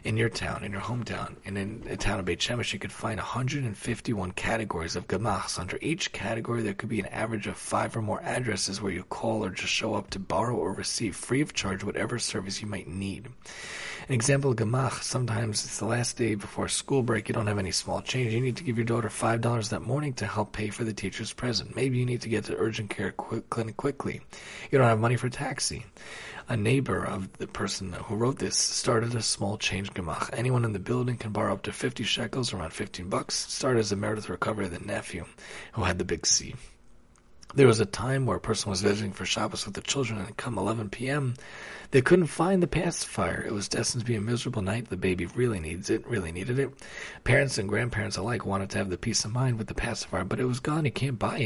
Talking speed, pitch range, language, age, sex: 235 wpm, 100-125 Hz, English, 30-49, male